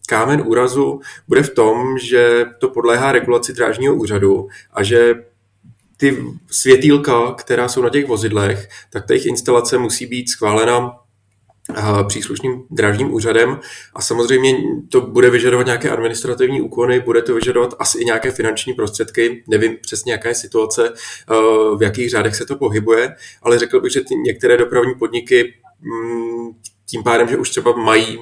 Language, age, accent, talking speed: Czech, 20-39, native, 150 wpm